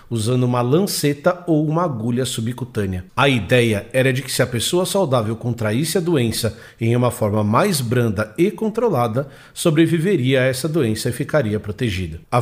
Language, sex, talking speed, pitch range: Portuguese, male, 165 wpm, 115-155 Hz